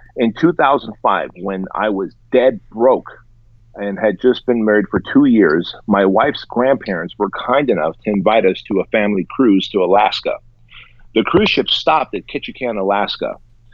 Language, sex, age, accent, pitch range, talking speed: English, male, 40-59, American, 105-120 Hz, 160 wpm